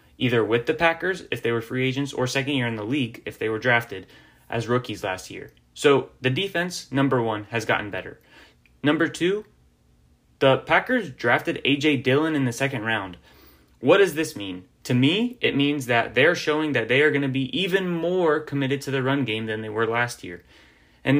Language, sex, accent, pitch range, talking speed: English, male, American, 115-150 Hz, 205 wpm